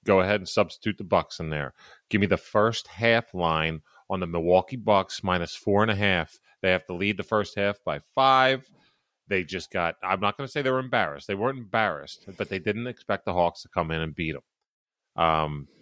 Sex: male